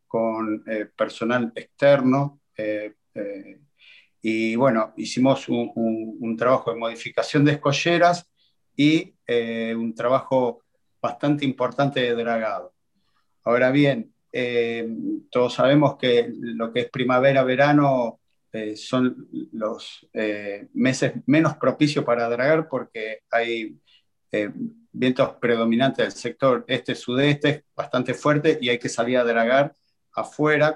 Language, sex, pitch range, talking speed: Spanish, male, 115-150 Hz, 115 wpm